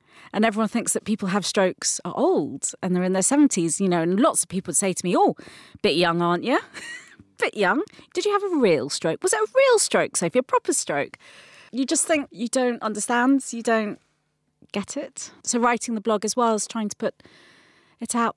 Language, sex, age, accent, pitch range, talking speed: English, female, 30-49, British, 175-240 Hz, 220 wpm